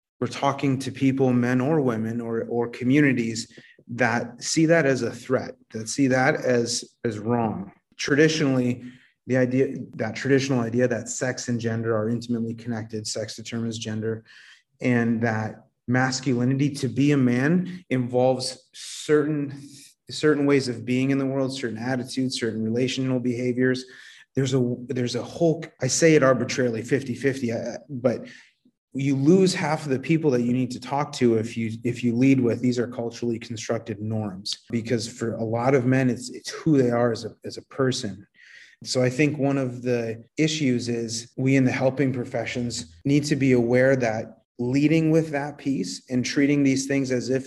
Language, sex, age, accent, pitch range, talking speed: English, male, 30-49, American, 115-135 Hz, 175 wpm